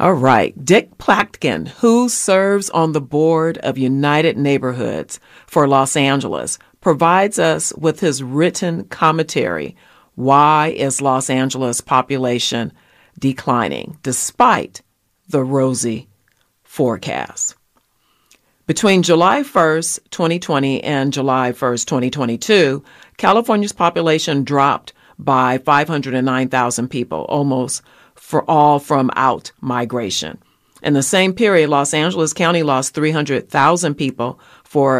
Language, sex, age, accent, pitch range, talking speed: English, female, 40-59, American, 130-160 Hz, 105 wpm